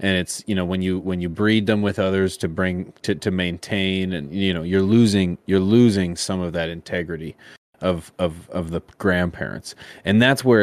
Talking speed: 205 wpm